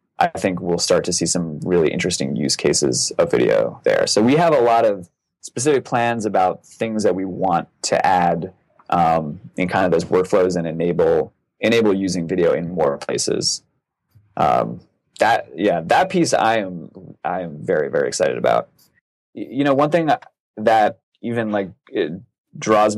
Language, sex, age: English, male, 20-39